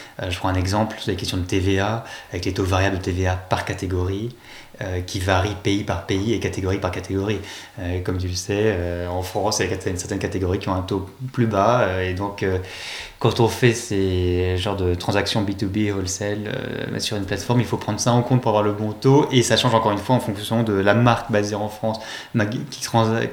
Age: 20-39